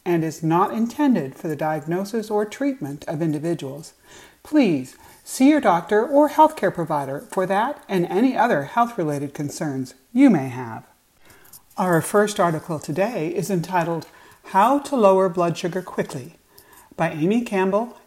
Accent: American